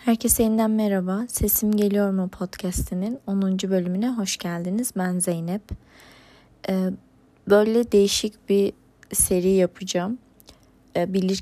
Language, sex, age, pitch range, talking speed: Turkish, female, 20-39, 180-210 Hz, 100 wpm